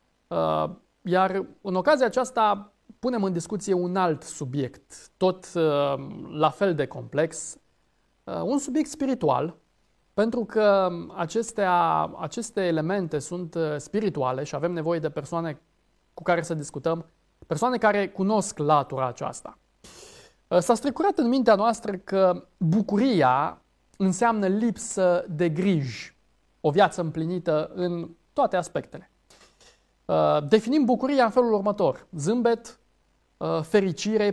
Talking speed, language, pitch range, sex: 110 wpm, Romanian, 155-210 Hz, male